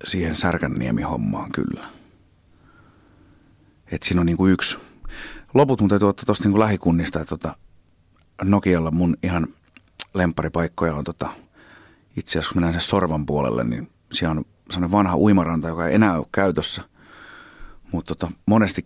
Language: Finnish